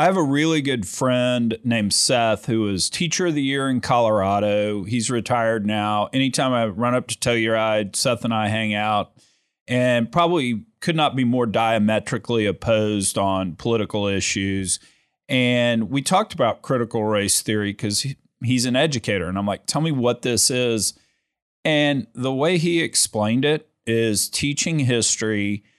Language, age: English, 40-59